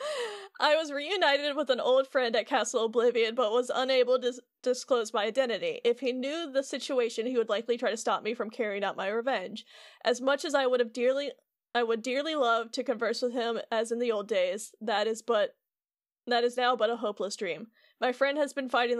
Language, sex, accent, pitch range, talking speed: English, female, American, 220-260 Hz, 220 wpm